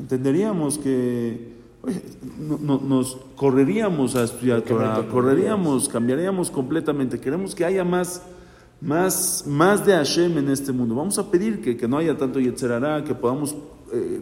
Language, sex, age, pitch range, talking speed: English, male, 50-69, 120-145 Hz, 150 wpm